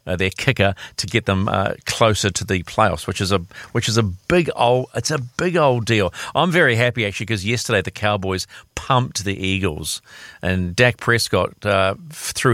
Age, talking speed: 40-59, 185 wpm